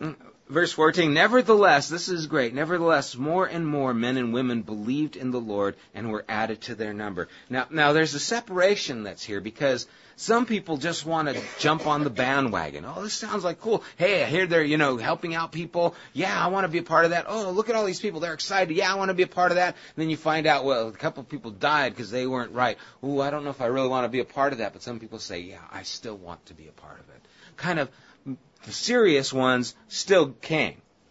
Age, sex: 30-49, male